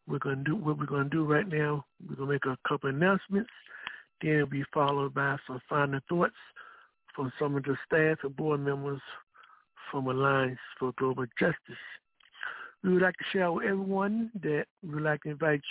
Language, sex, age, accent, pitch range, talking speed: English, male, 60-79, American, 140-175 Hz, 205 wpm